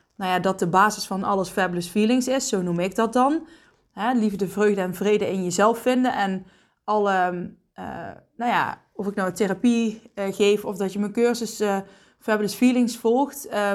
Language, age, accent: Dutch, 20-39, Dutch